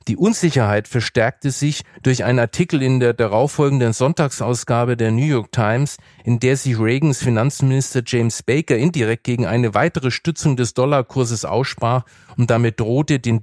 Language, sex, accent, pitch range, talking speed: German, male, German, 120-140 Hz, 150 wpm